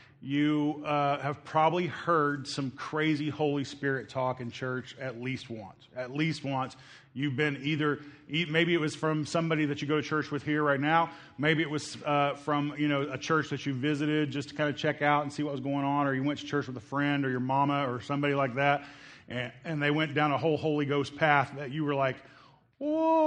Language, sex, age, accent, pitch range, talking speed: English, male, 30-49, American, 135-155 Hz, 230 wpm